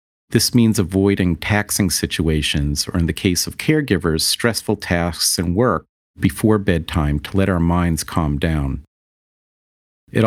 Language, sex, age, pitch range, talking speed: English, male, 50-69, 75-100 Hz, 140 wpm